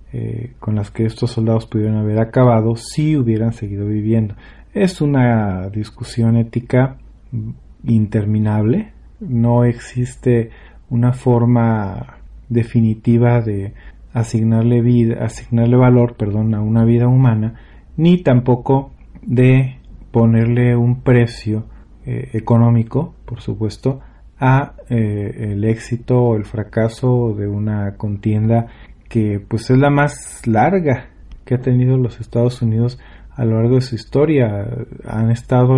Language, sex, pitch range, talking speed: Spanish, male, 110-125 Hz, 120 wpm